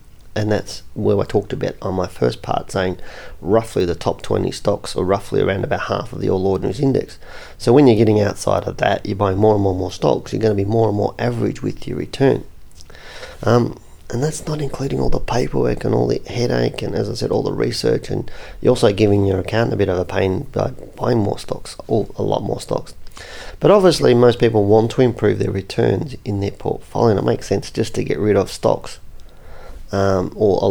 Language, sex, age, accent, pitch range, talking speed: English, male, 30-49, Australian, 95-115 Hz, 225 wpm